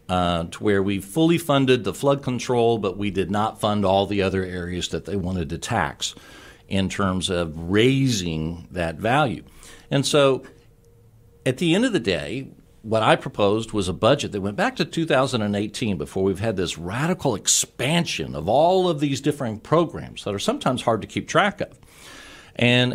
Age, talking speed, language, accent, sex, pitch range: 60-79, 180 wpm, English, American, male, 95-140 Hz